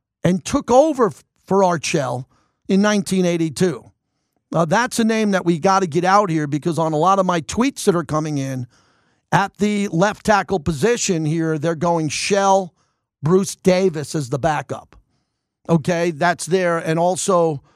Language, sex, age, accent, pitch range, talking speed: English, male, 50-69, American, 155-190 Hz, 160 wpm